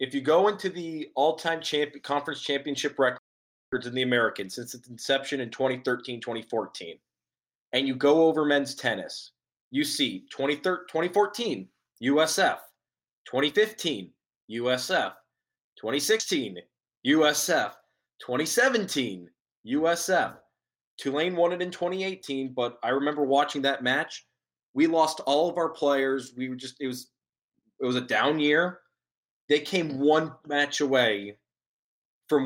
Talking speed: 125 wpm